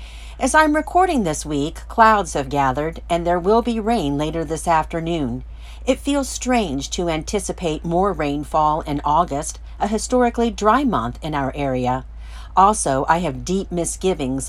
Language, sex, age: English, female, 50-69